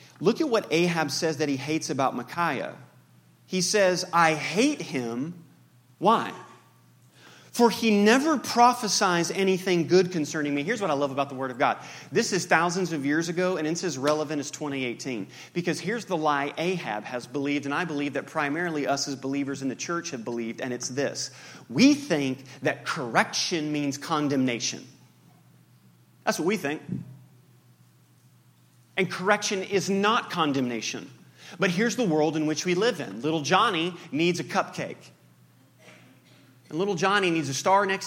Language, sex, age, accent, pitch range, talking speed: English, male, 30-49, American, 140-185 Hz, 165 wpm